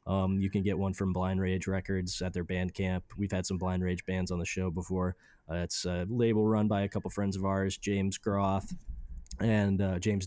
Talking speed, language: 235 wpm, English